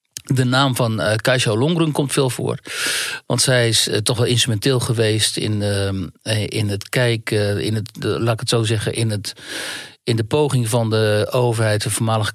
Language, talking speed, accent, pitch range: Dutch, 195 wpm, Dutch, 110-135 Hz